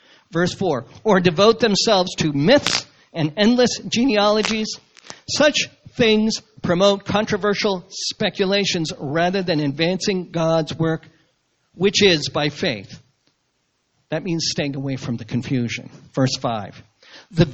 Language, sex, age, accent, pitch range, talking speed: English, male, 50-69, American, 150-210 Hz, 115 wpm